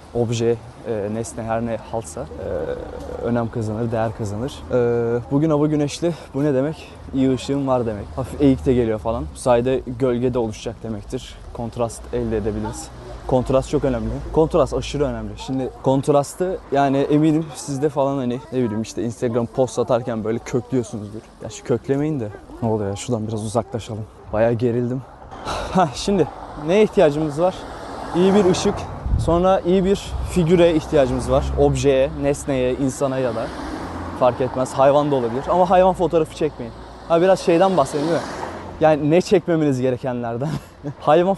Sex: male